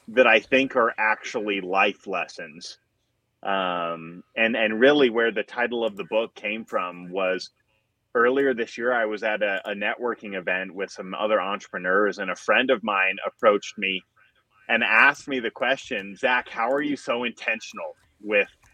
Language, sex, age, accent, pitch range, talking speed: English, male, 30-49, American, 105-125 Hz, 170 wpm